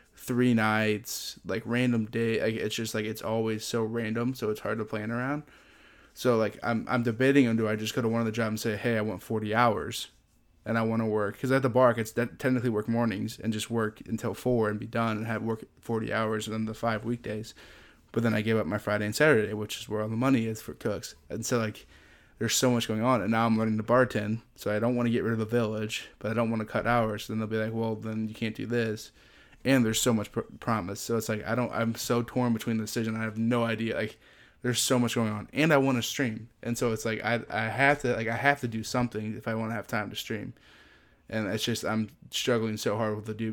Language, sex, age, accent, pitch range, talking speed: English, male, 20-39, American, 110-120 Hz, 270 wpm